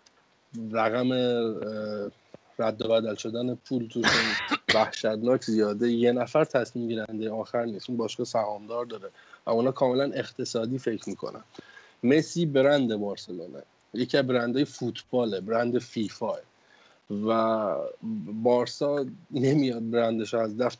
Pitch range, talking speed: 110-135 Hz, 115 wpm